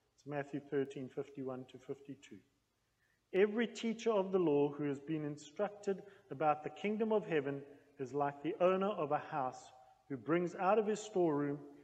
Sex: male